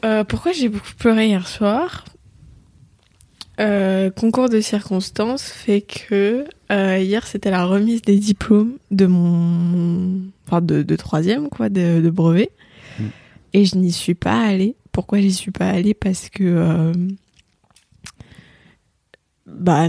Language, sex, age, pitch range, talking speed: French, female, 20-39, 180-210 Hz, 135 wpm